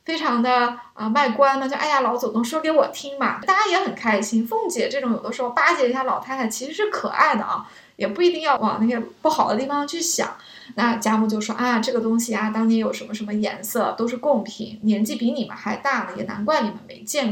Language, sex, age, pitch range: Chinese, female, 20-39, 225-285 Hz